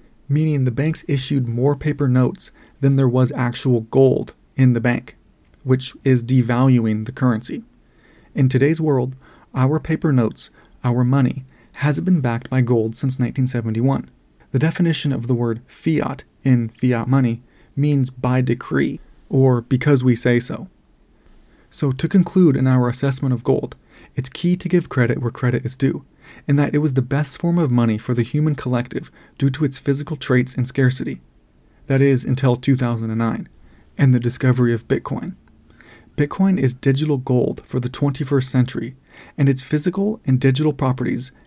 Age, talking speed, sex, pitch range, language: 30-49, 160 wpm, male, 125-145 Hz, English